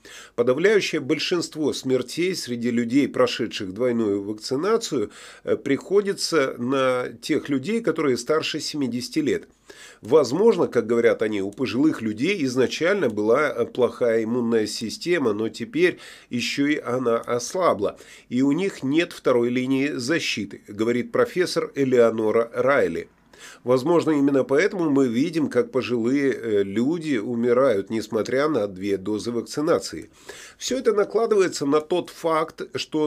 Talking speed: 120 wpm